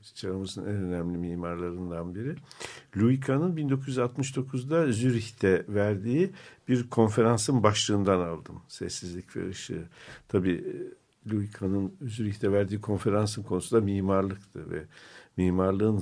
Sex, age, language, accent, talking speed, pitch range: male, 50-69, Turkish, native, 95 wpm, 95-130 Hz